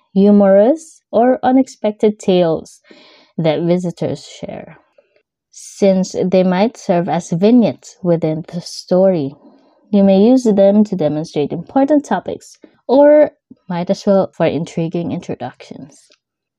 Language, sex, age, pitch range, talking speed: English, female, 20-39, 180-245 Hz, 110 wpm